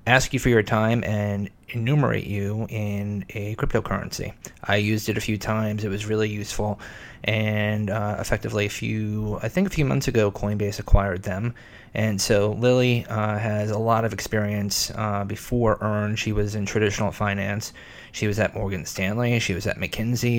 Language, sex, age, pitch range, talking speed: English, male, 20-39, 100-110 Hz, 180 wpm